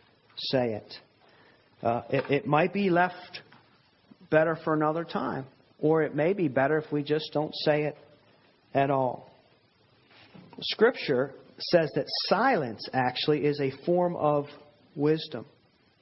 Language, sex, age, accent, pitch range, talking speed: English, male, 40-59, American, 135-175 Hz, 130 wpm